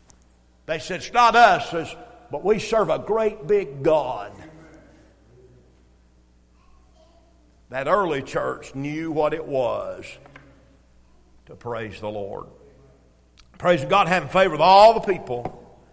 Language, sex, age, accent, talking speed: English, male, 50-69, American, 120 wpm